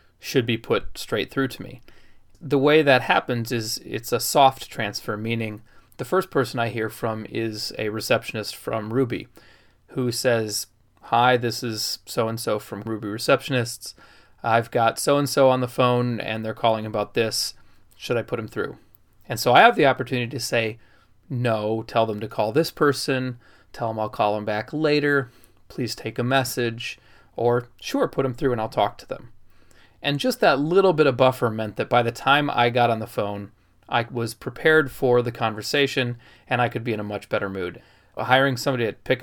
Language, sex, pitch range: English, male, 110-130 Hz